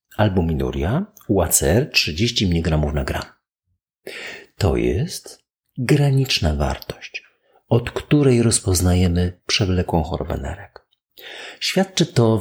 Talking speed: 90 wpm